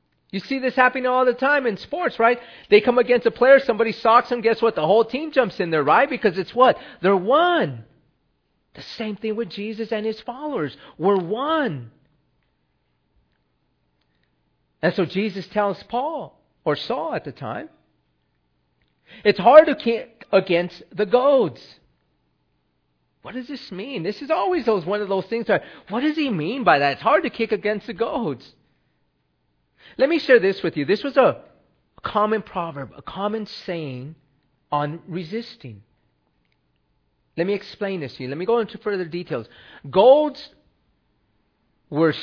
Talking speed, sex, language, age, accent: 165 wpm, male, English, 40-59, American